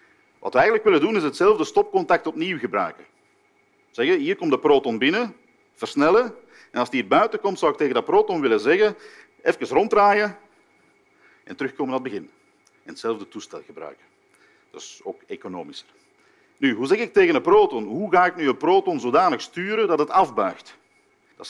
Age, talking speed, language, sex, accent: 50-69, 175 wpm, Dutch, male, Dutch